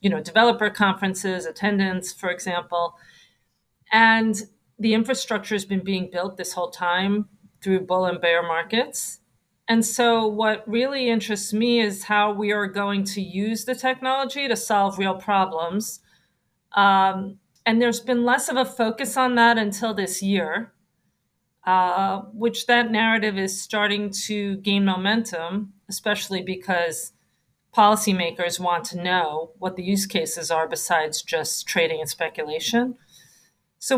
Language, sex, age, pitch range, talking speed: English, female, 40-59, 185-220 Hz, 140 wpm